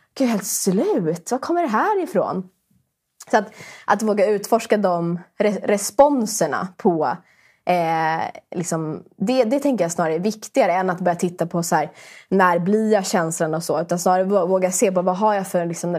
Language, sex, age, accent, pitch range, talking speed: Swedish, female, 20-39, native, 170-210 Hz, 180 wpm